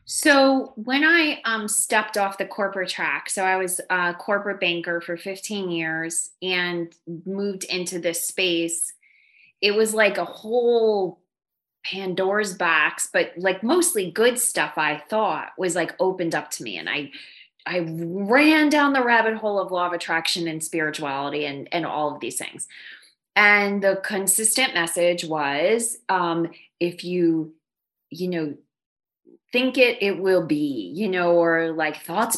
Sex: female